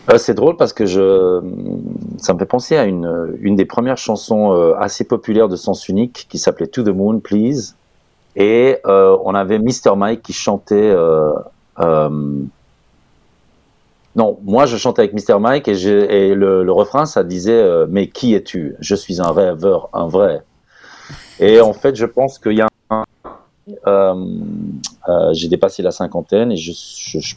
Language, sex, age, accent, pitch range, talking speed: French, male, 40-59, French, 85-110 Hz, 180 wpm